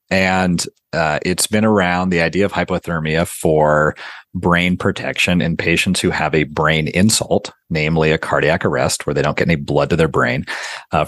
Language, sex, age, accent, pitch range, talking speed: English, male, 40-59, American, 80-95 Hz, 180 wpm